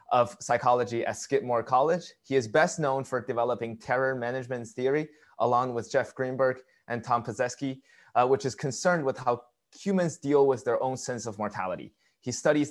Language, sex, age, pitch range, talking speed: English, male, 20-39, 110-130 Hz, 170 wpm